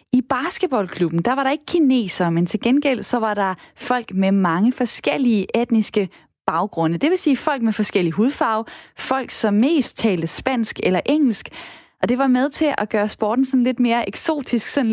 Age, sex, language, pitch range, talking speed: 20-39, female, Danish, 200-265 Hz, 185 wpm